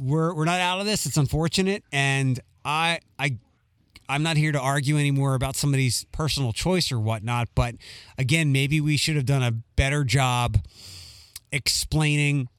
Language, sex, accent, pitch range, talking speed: English, male, American, 120-160 Hz, 160 wpm